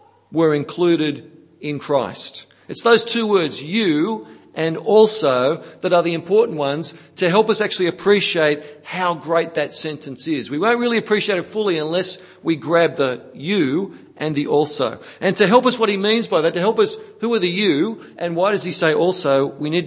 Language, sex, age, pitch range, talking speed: English, male, 40-59, 155-195 Hz, 195 wpm